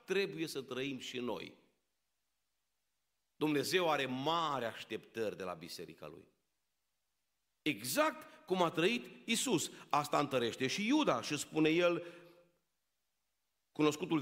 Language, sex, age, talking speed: Romanian, male, 50-69, 110 wpm